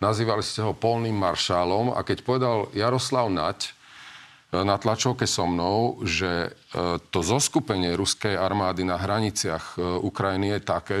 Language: Slovak